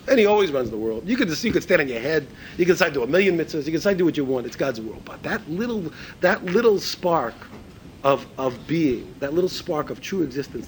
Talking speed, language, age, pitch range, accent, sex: 275 wpm, English, 40-59, 125-180 Hz, American, male